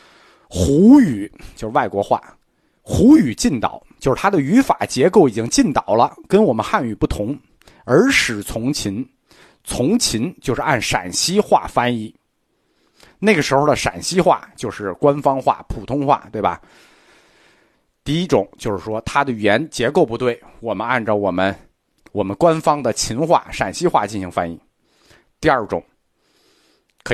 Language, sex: Chinese, male